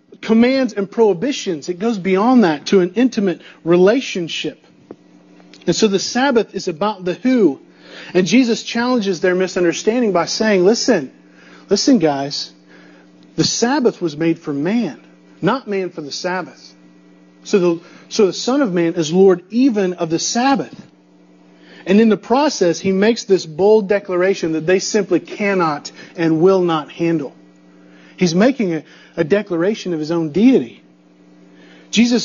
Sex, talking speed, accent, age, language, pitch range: male, 150 wpm, American, 40-59, English, 165-225 Hz